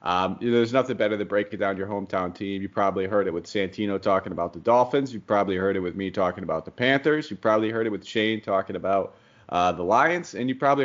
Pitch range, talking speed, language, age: 95-120 Hz, 255 wpm, English, 30-49